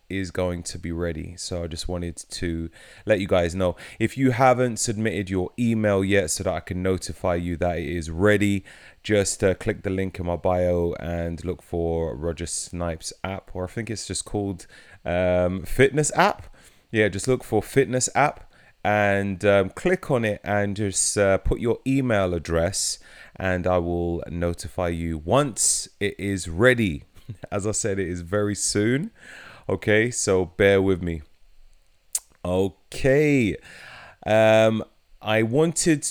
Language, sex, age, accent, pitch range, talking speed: English, male, 30-49, British, 85-110 Hz, 160 wpm